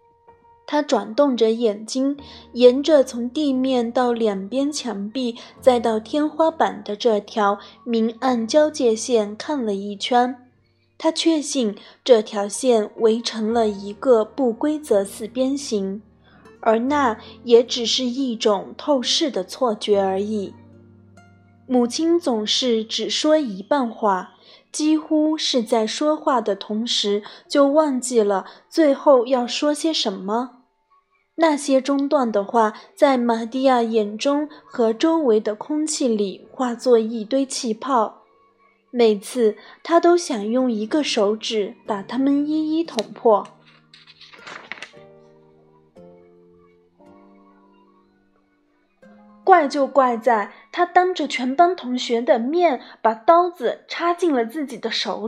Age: 20-39